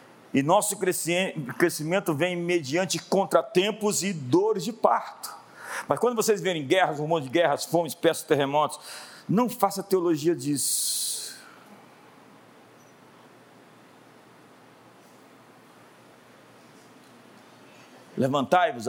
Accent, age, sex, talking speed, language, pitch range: Brazilian, 50-69, male, 85 wpm, Portuguese, 165-215 Hz